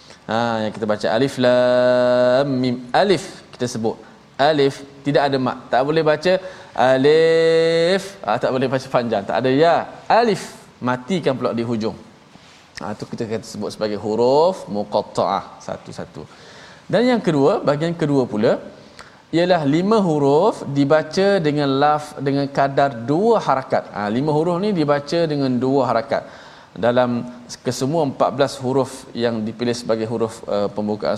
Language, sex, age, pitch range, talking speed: Malayalam, male, 20-39, 120-150 Hz, 140 wpm